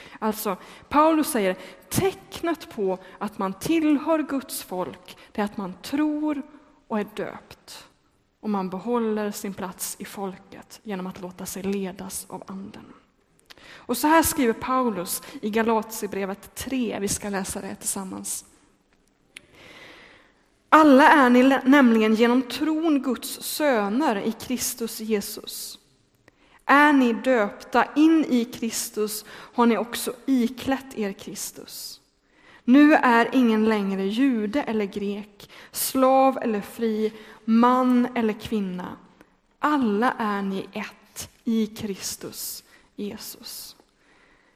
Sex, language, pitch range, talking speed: female, Swedish, 205-270 Hz, 115 wpm